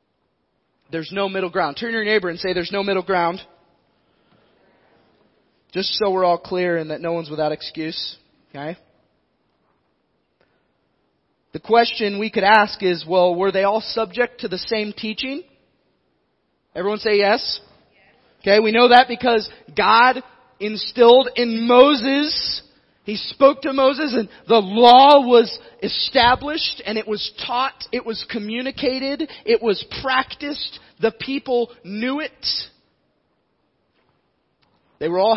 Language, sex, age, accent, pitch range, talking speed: English, male, 30-49, American, 185-240 Hz, 130 wpm